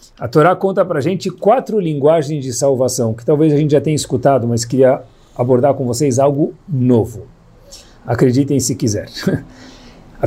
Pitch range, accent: 140-210 Hz, Brazilian